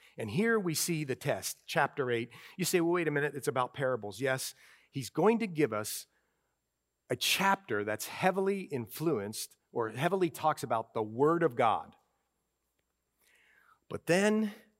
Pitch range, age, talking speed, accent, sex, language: 110-185 Hz, 40-59, 155 wpm, American, male, English